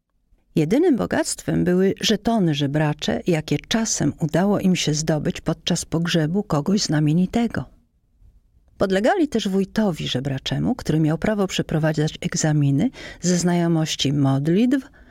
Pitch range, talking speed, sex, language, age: 145-190 Hz, 105 wpm, female, Polish, 50-69